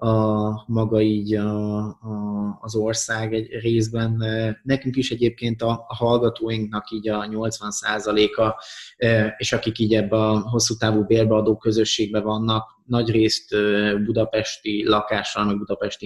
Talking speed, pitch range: 120 wpm, 110-120 Hz